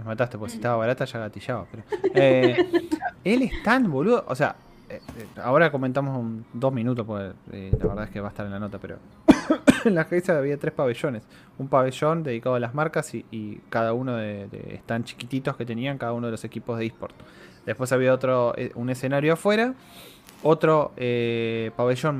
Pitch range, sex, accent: 115-155 Hz, male, Argentinian